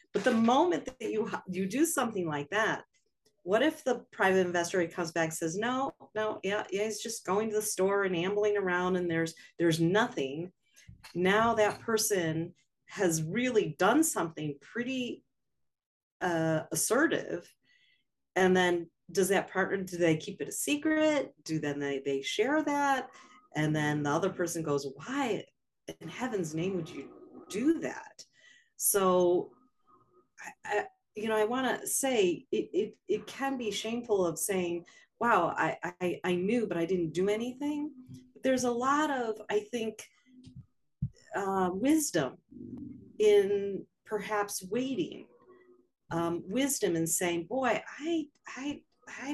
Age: 40-59